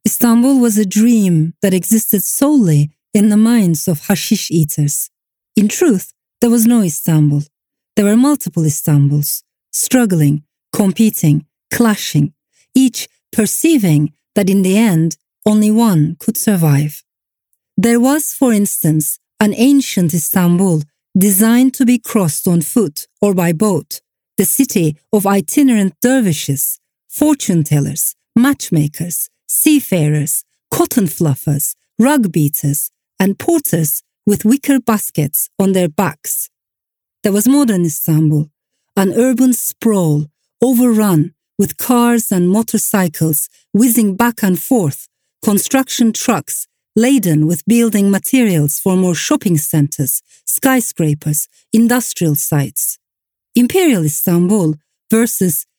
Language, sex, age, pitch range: English, female, 40-59, 155-230 Hz